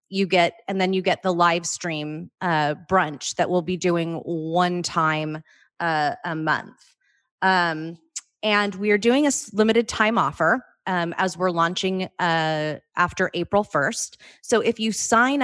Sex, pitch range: female, 170-200 Hz